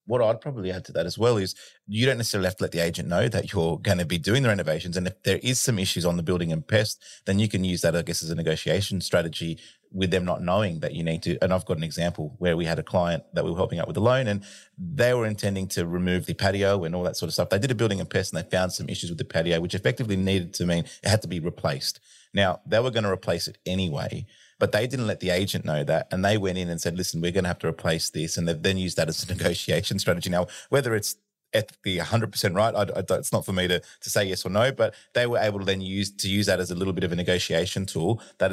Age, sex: 30-49, male